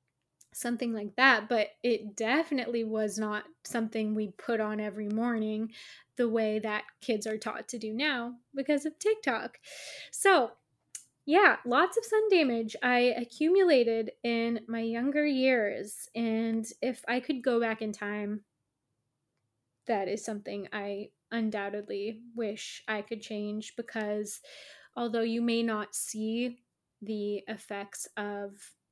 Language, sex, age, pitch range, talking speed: English, female, 20-39, 215-245 Hz, 135 wpm